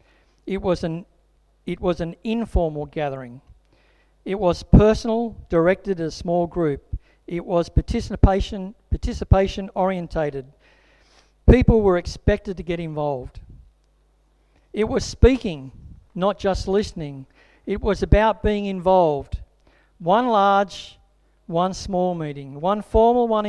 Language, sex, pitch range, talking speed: English, male, 165-210 Hz, 120 wpm